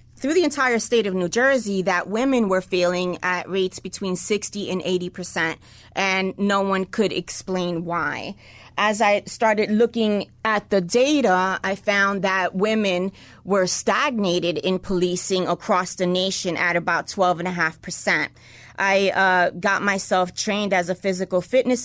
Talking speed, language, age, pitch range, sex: 160 wpm, English, 30-49, 180-220 Hz, female